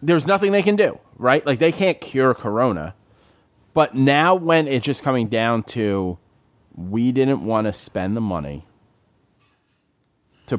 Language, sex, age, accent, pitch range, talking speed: English, male, 30-49, American, 105-150 Hz, 155 wpm